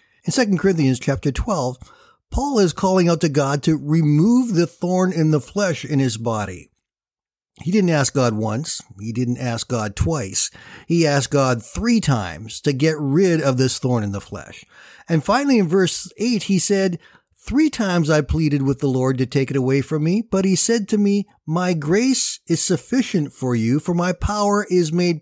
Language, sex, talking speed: English, male, 195 wpm